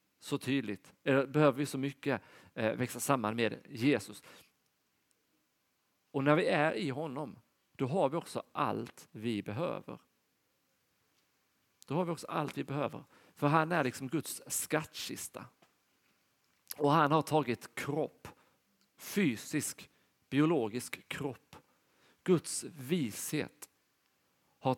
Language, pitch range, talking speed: Swedish, 125-155 Hz, 115 wpm